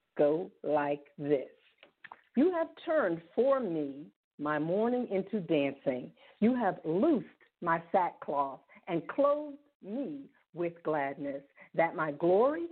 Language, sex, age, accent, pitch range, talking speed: English, female, 50-69, American, 150-210 Hz, 120 wpm